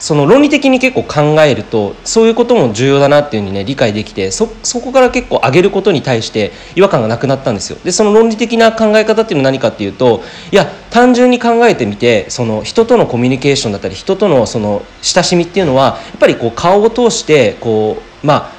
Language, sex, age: Japanese, male, 40-59